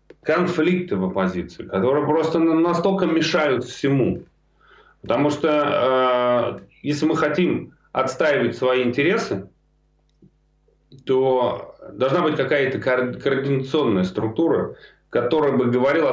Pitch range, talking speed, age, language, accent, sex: 110-155 Hz, 95 wpm, 30-49, Russian, native, male